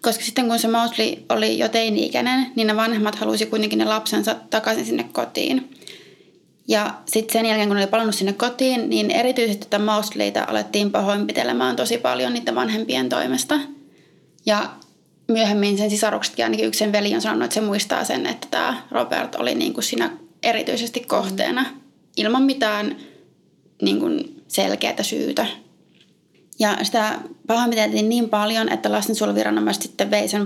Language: Finnish